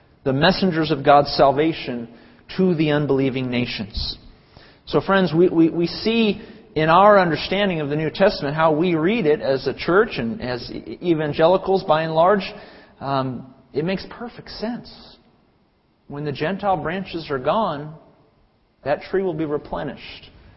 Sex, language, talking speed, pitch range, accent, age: male, English, 150 wpm, 145-195 Hz, American, 40-59